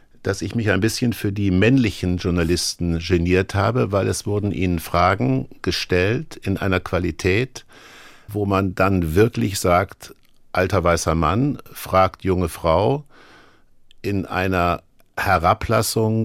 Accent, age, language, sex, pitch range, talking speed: German, 60-79, German, male, 90-110 Hz, 125 wpm